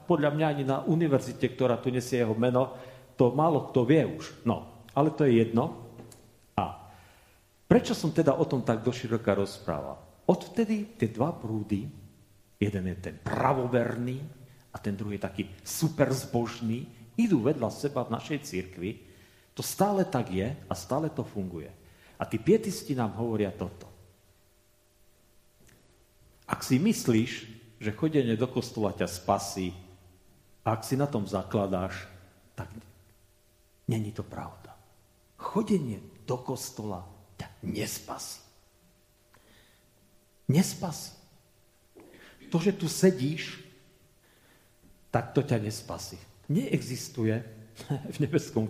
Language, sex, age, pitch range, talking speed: Slovak, male, 40-59, 100-130 Hz, 120 wpm